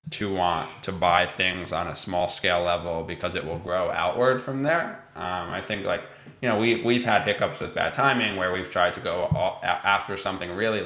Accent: American